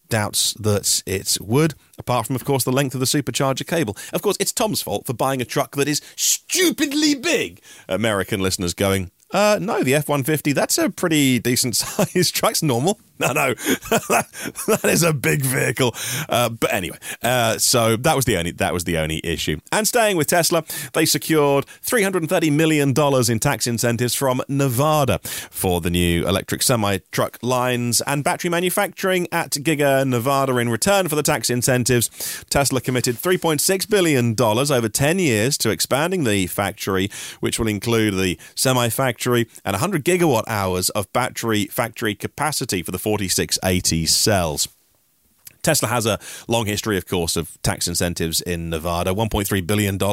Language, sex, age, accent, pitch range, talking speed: English, male, 30-49, British, 100-155 Hz, 170 wpm